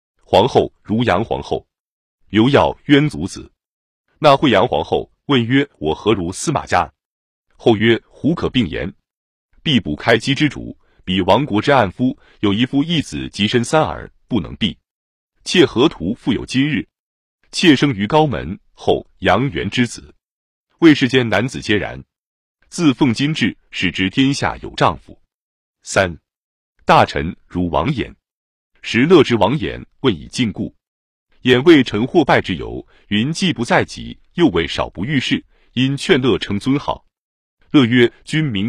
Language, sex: Chinese, male